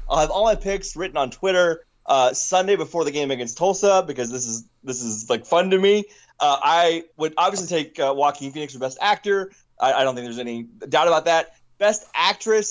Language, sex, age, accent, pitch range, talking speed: English, male, 20-39, American, 160-210 Hz, 215 wpm